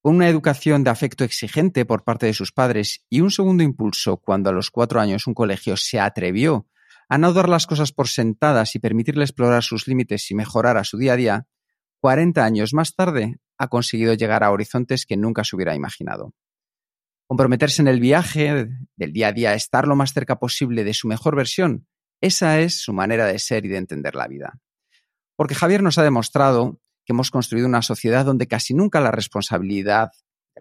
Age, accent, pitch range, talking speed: 40-59, Spanish, 110-145 Hz, 200 wpm